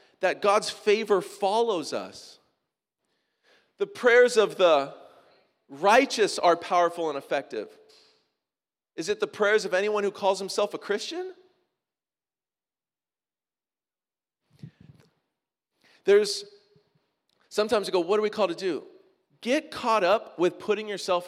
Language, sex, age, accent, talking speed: English, male, 40-59, American, 115 wpm